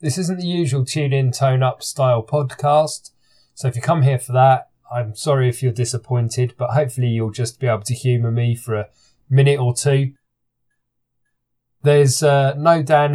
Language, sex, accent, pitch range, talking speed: English, male, British, 115-135 Hz, 185 wpm